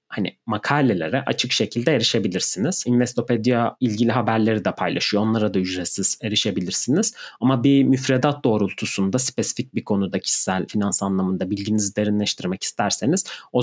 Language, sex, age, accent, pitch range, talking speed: Turkish, male, 30-49, native, 100-130 Hz, 125 wpm